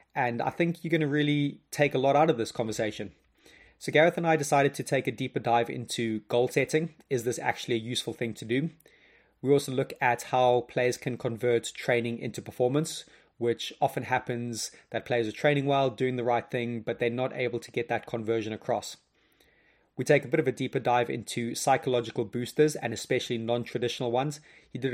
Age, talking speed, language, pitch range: 20-39, 200 wpm, English, 115-130 Hz